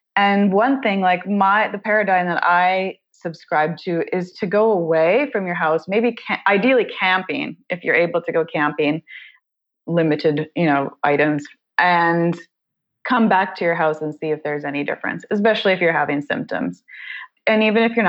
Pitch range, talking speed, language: 160-205 Hz, 175 wpm, English